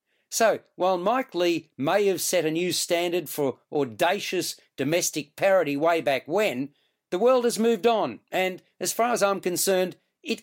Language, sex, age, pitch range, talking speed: English, male, 50-69, 160-200 Hz, 165 wpm